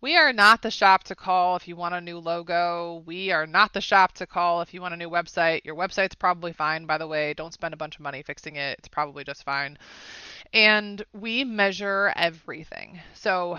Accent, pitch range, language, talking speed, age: American, 165-205 Hz, English, 220 wpm, 20-39